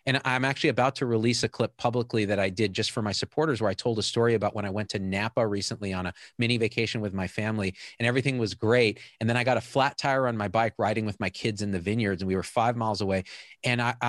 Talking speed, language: 275 wpm, English